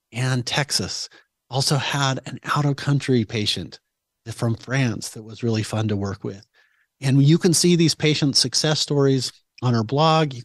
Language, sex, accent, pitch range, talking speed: English, male, American, 105-125 Hz, 160 wpm